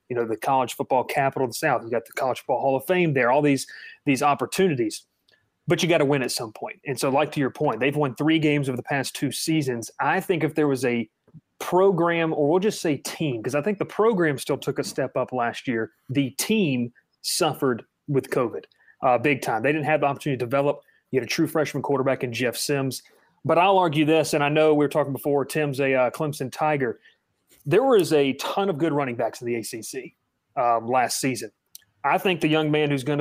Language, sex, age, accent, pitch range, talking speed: English, male, 30-49, American, 130-155 Hz, 235 wpm